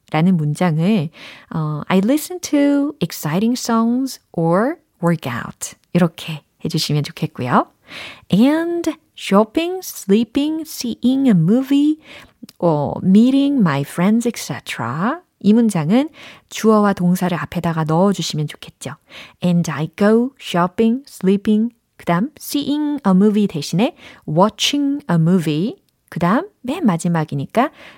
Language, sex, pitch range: Korean, female, 165-245 Hz